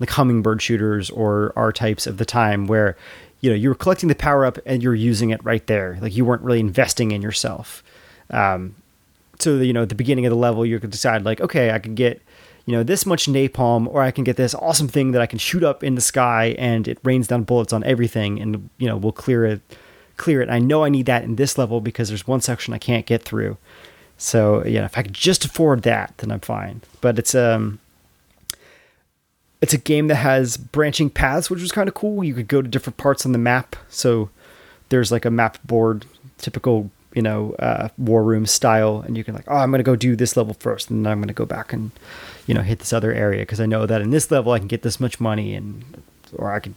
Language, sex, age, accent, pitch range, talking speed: English, male, 30-49, American, 110-130 Hz, 250 wpm